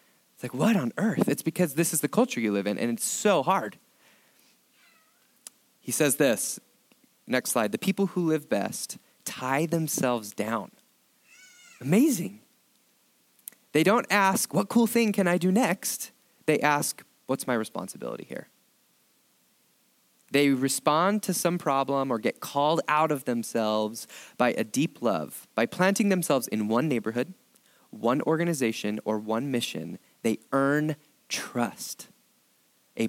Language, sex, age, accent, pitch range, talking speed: English, male, 30-49, American, 120-195 Hz, 140 wpm